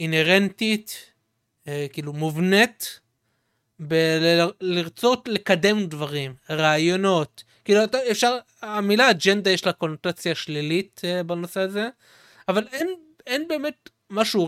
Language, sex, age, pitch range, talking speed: Hebrew, male, 30-49, 160-225 Hz, 115 wpm